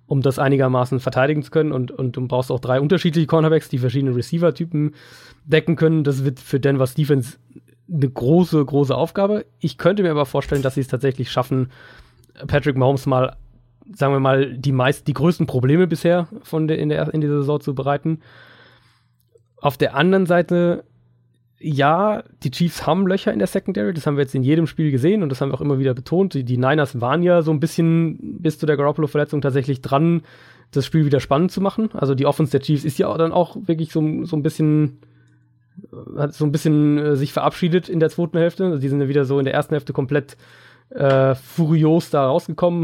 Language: German